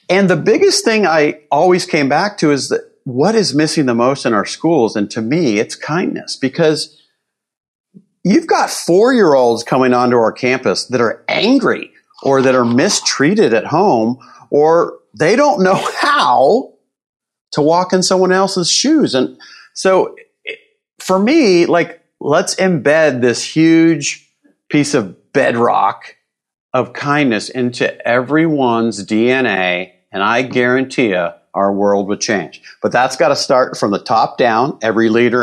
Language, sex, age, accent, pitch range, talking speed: English, male, 40-59, American, 105-175 Hz, 150 wpm